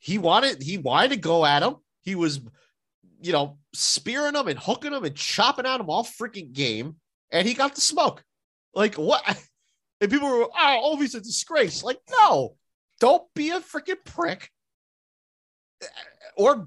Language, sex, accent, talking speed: English, male, American, 165 wpm